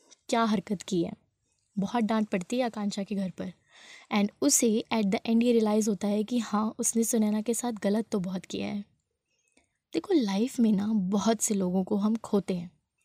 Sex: female